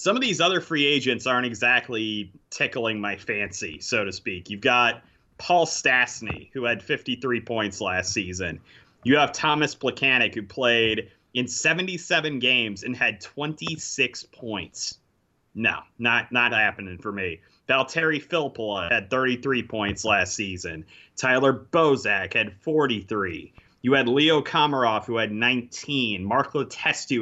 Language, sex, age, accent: English, male, 30-49, American